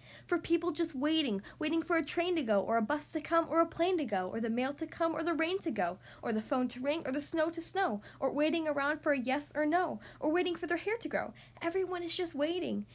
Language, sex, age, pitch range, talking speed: English, female, 10-29, 255-345 Hz, 275 wpm